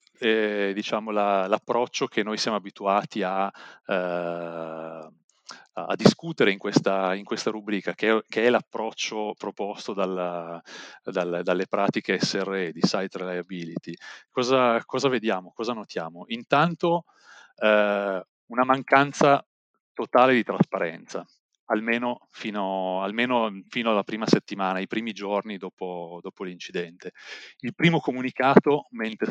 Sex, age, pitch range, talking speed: male, 30-49, 95-120 Hz, 125 wpm